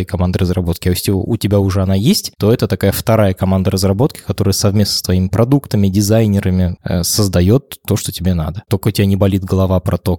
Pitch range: 100-130 Hz